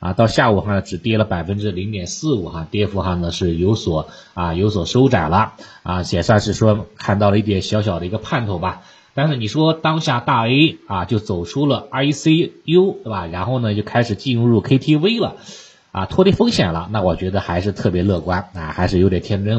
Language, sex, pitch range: Chinese, male, 90-125 Hz